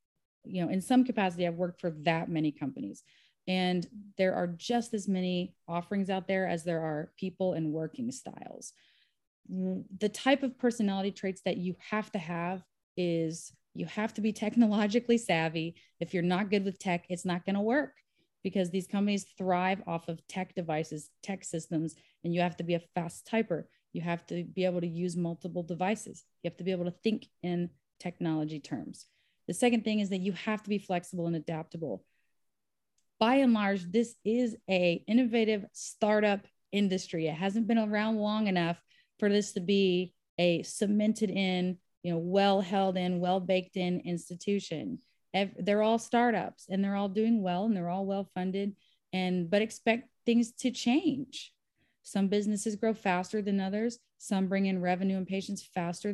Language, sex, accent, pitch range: English, female, American, 175-210 Hz